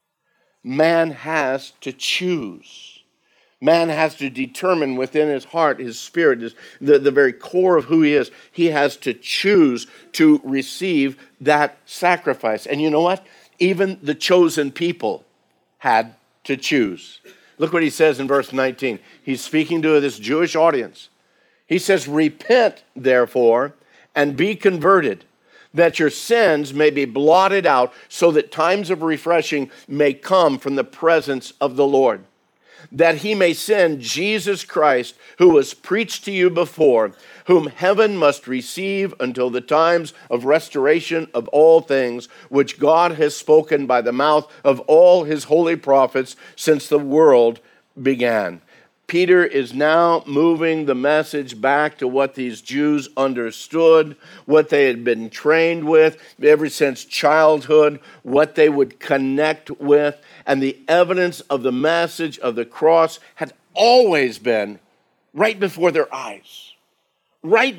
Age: 50-69